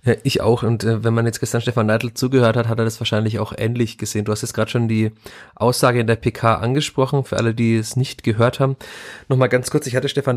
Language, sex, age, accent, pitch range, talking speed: German, male, 30-49, German, 115-130 Hz, 250 wpm